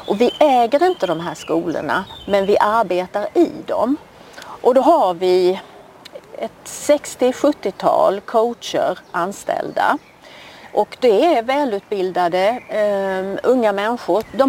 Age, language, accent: 40-59, English, Swedish